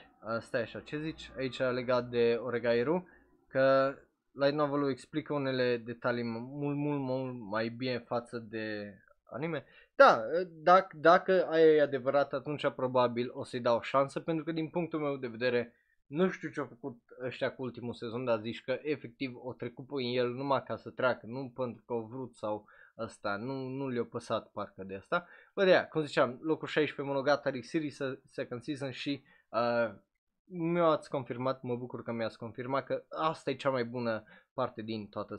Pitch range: 115-150 Hz